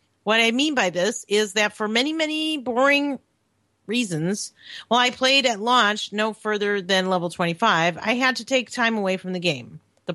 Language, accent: English, American